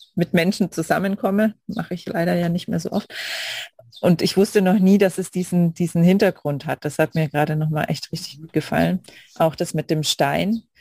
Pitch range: 150-175 Hz